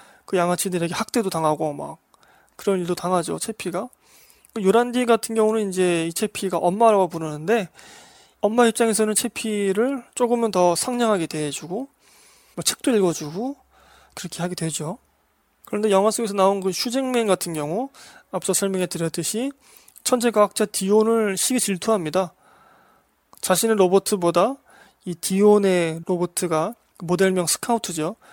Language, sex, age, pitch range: Korean, male, 20-39, 170-225 Hz